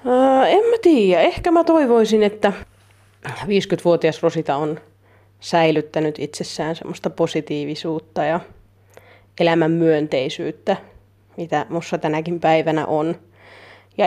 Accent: native